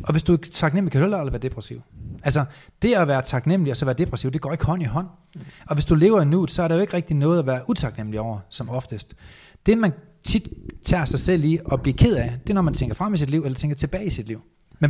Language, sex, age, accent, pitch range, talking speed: Danish, male, 30-49, native, 125-165 Hz, 285 wpm